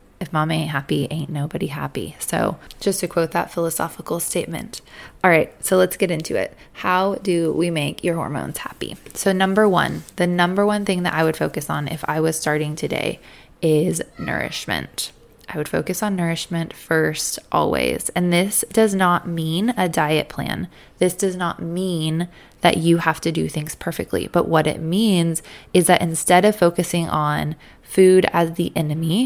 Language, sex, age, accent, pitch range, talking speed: English, female, 20-39, American, 160-180 Hz, 180 wpm